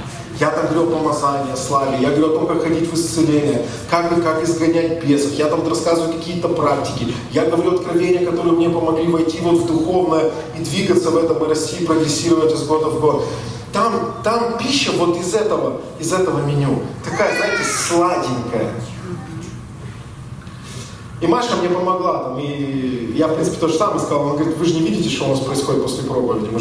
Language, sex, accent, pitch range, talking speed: Russian, male, native, 140-170 Hz, 185 wpm